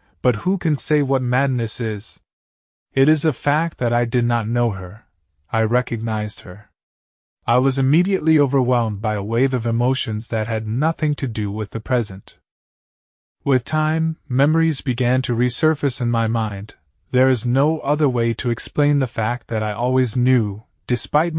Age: 20-39